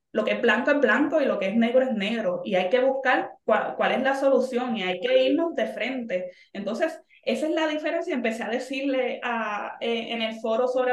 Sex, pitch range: female, 215-275 Hz